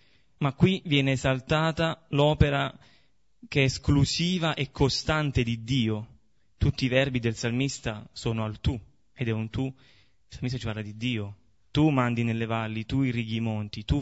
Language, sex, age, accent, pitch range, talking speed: Italian, male, 30-49, native, 115-135 Hz, 170 wpm